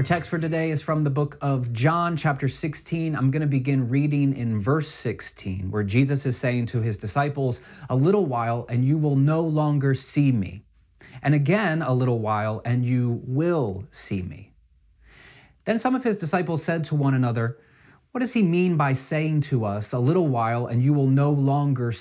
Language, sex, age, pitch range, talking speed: English, male, 30-49, 120-155 Hz, 195 wpm